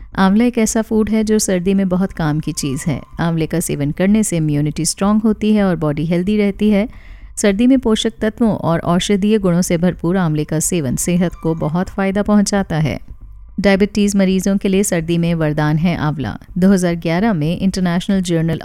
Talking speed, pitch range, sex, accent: 185 wpm, 160-200 Hz, female, native